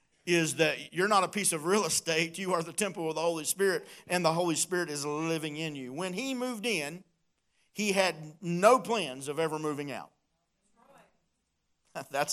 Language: English